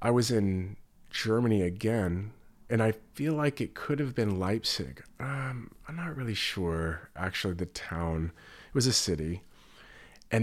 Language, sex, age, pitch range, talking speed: English, male, 30-49, 90-110 Hz, 155 wpm